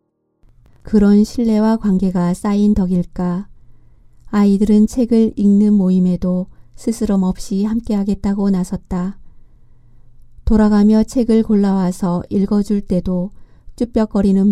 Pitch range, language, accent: 180-210 Hz, Korean, native